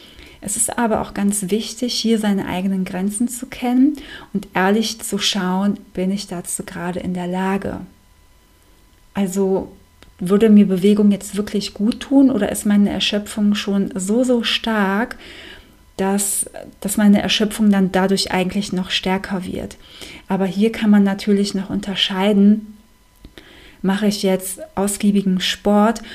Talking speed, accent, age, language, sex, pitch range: 140 wpm, German, 30-49, German, female, 185-210 Hz